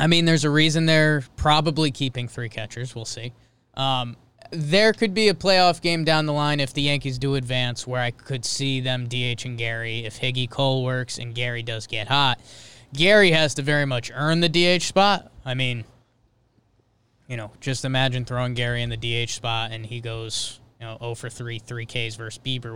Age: 20-39